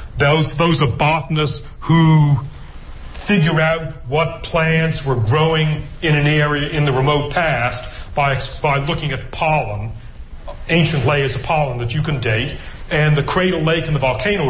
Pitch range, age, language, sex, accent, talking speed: 130-155 Hz, 40-59, English, male, American, 155 wpm